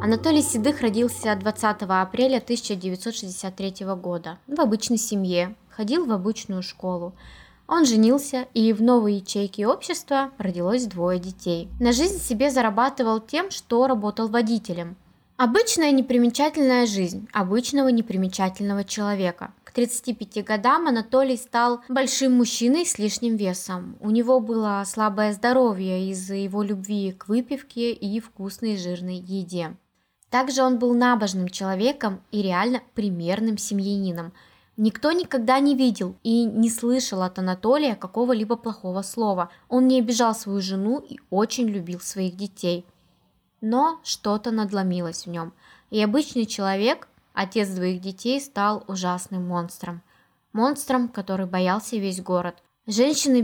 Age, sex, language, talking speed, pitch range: 20-39, female, Russian, 125 wpm, 190-245 Hz